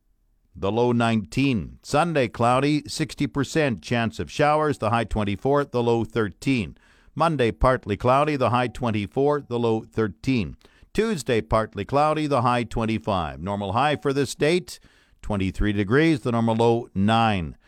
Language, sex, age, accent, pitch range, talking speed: English, male, 50-69, American, 110-145 Hz, 140 wpm